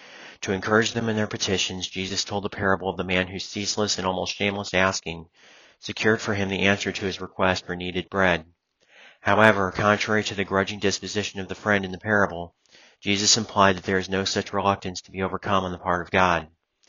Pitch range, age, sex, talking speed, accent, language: 90-100 Hz, 30-49, male, 205 wpm, American, English